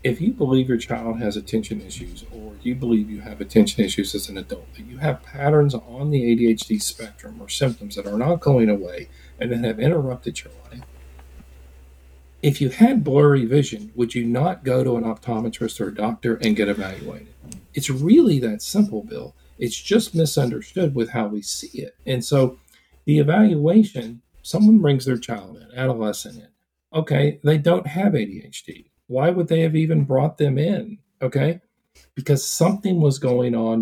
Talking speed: 175 wpm